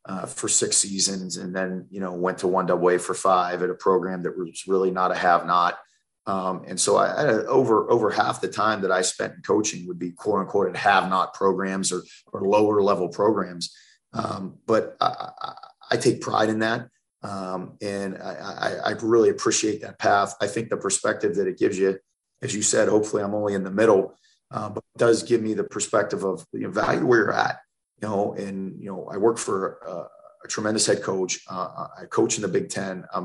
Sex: male